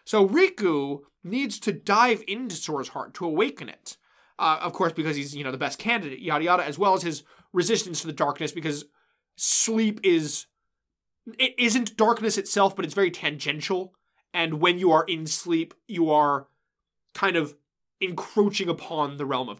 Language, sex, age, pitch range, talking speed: English, male, 20-39, 150-220 Hz, 175 wpm